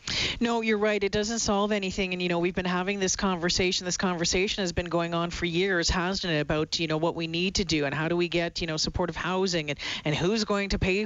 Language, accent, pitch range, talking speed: English, American, 155-185 Hz, 260 wpm